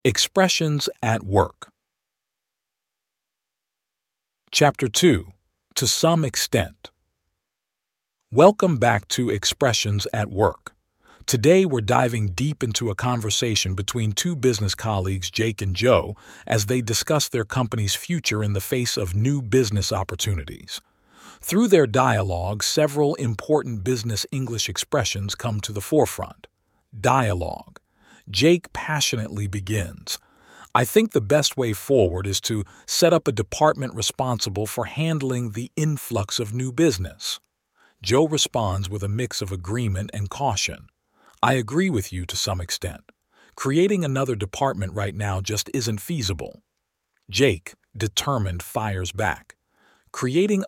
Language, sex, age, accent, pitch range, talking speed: English, male, 50-69, American, 100-135 Hz, 125 wpm